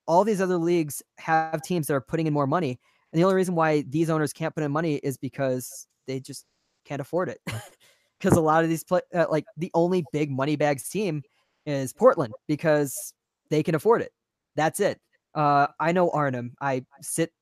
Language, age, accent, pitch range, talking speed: English, 20-39, American, 135-170 Hz, 200 wpm